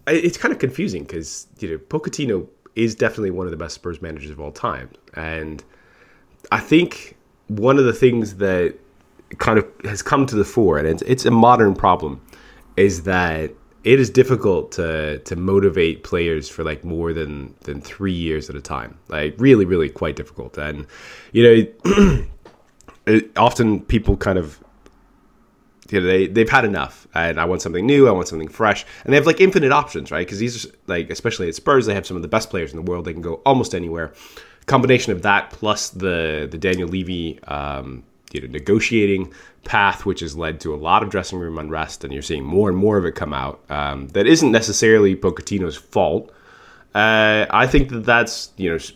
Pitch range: 80-115 Hz